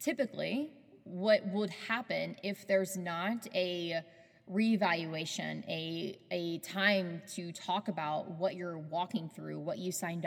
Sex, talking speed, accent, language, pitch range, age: female, 130 wpm, American, English, 175-210 Hz, 20-39